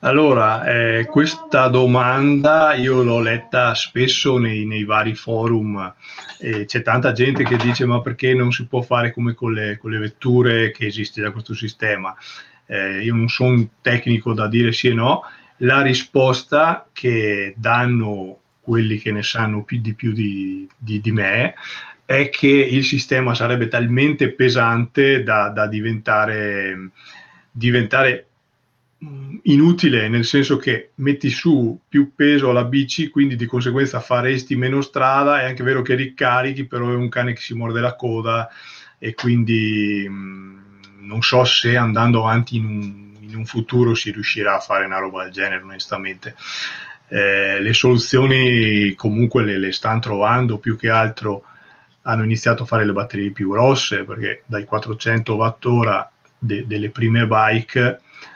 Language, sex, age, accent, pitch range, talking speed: Italian, male, 30-49, native, 110-130 Hz, 155 wpm